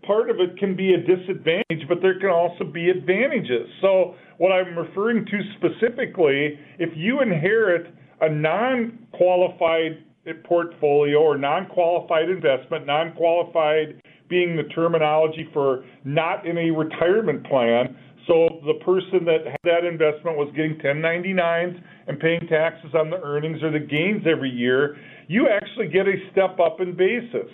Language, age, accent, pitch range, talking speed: English, 40-59, American, 155-185 Hz, 145 wpm